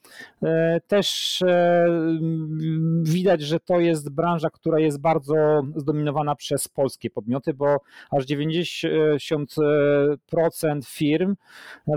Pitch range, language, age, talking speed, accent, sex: 155-180 Hz, Polish, 40-59, 90 wpm, native, male